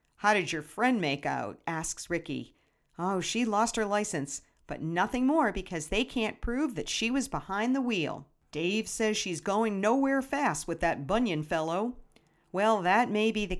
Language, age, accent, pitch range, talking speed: English, 50-69, American, 175-275 Hz, 180 wpm